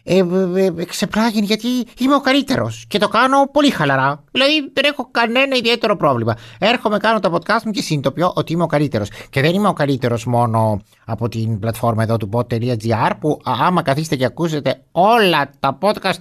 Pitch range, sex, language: 130-205 Hz, male, Greek